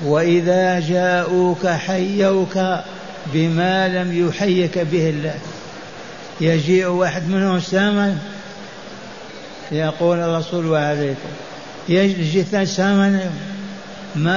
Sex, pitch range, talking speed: male, 170-190 Hz, 75 wpm